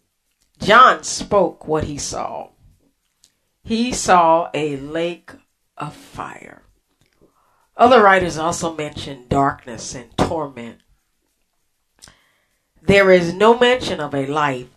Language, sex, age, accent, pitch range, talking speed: English, female, 40-59, American, 150-200 Hz, 100 wpm